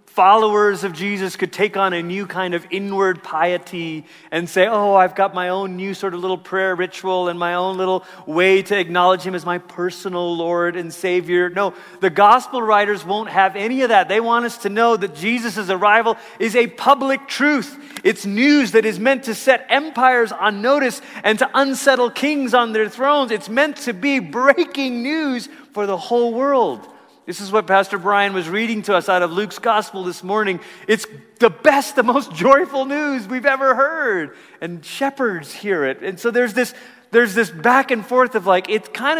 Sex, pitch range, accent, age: male, 175-240 Hz, American, 30-49